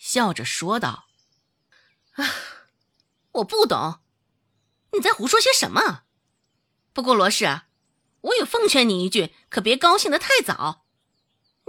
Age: 20-39